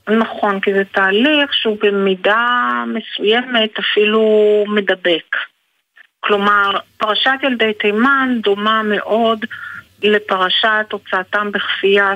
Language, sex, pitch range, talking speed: Hebrew, female, 190-225 Hz, 90 wpm